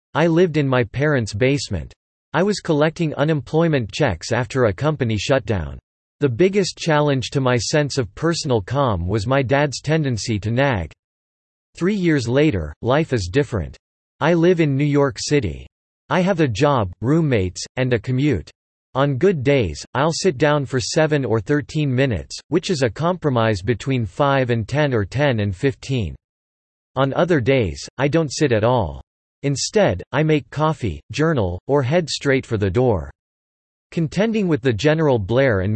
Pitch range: 115-150 Hz